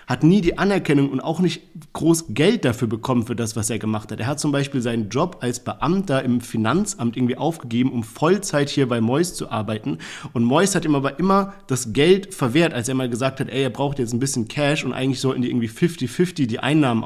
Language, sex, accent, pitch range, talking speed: German, male, German, 125-155 Hz, 230 wpm